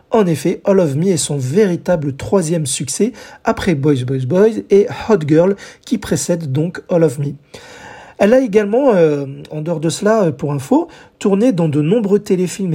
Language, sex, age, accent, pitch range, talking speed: French, male, 40-59, French, 160-220 Hz, 180 wpm